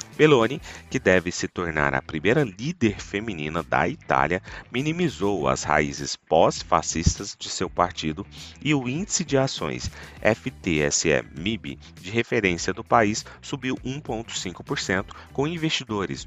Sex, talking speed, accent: male, 120 wpm, Brazilian